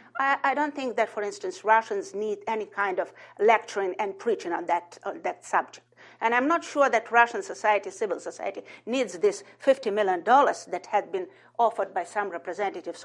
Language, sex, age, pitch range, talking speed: English, female, 50-69, 215-315 Hz, 180 wpm